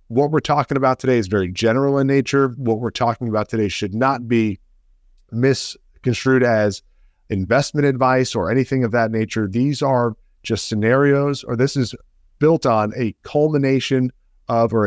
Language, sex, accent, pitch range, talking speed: English, male, American, 105-130 Hz, 160 wpm